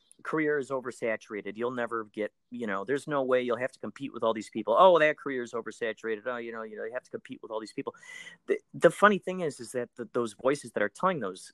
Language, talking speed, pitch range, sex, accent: English, 265 wpm, 110-165 Hz, male, American